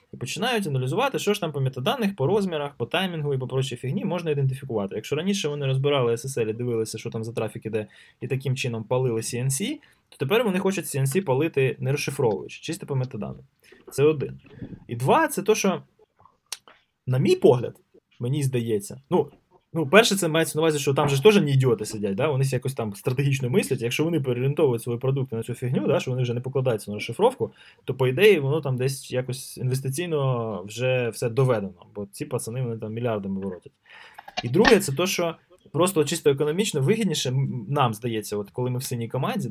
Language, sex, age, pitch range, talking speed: Ukrainian, male, 20-39, 125-160 Hz, 195 wpm